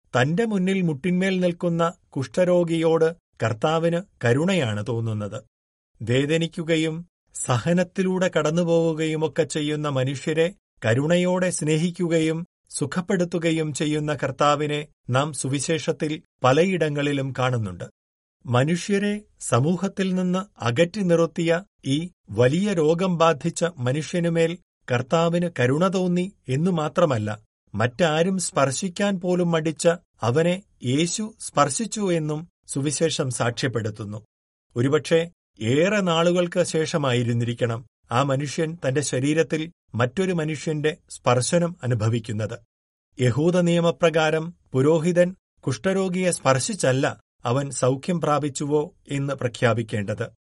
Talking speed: 80 wpm